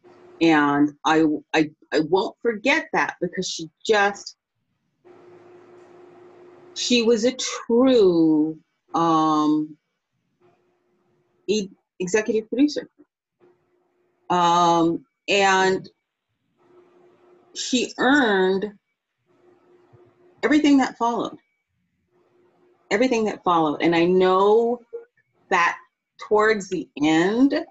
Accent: American